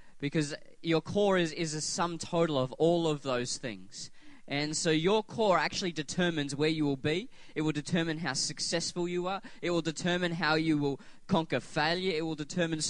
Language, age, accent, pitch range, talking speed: English, 20-39, Australian, 150-175 Hz, 190 wpm